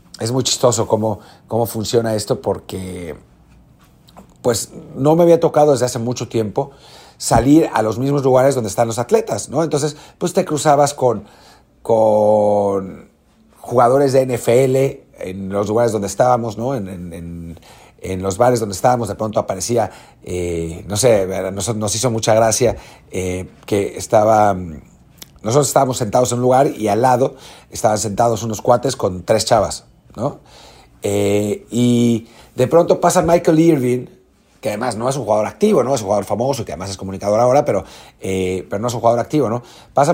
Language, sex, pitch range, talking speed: English, male, 105-145 Hz, 170 wpm